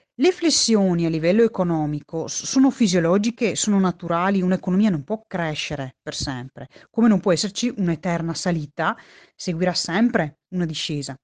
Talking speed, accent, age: 135 wpm, native, 30-49